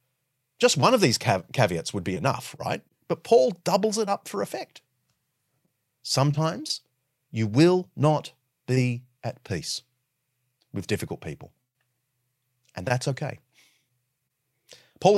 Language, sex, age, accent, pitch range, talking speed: English, male, 30-49, Australian, 115-145 Hz, 125 wpm